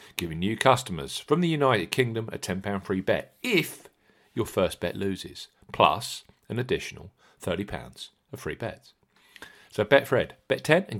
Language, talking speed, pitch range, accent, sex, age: English, 145 wpm, 90-140 Hz, British, male, 40-59